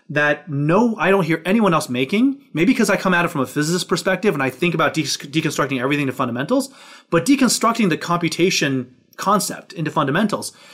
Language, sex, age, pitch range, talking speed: English, male, 30-49, 140-190 Hz, 185 wpm